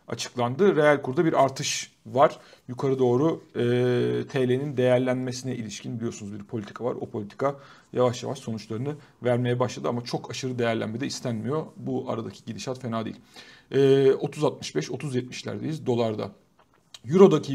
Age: 40-59